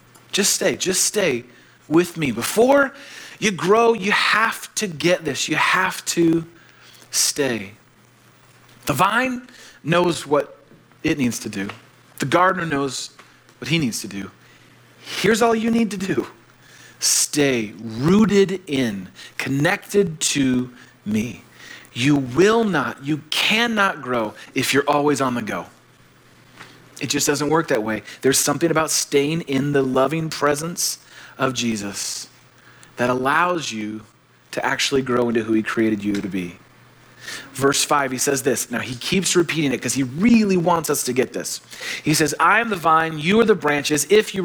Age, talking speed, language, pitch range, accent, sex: 40-59, 160 wpm, English, 125-190 Hz, American, male